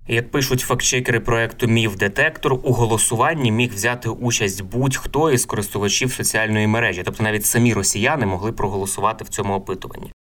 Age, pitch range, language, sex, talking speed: 20-39, 105-125 Hz, Ukrainian, male, 140 wpm